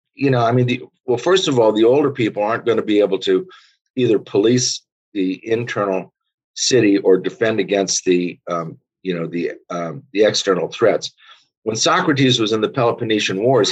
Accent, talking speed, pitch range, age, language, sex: American, 185 wpm, 90-125 Hz, 50-69, English, male